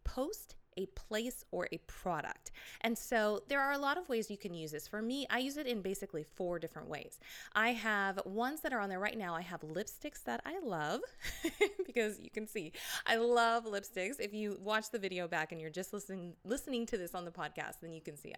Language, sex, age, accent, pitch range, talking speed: English, female, 20-39, American, 185-255 Hz, 230 wpm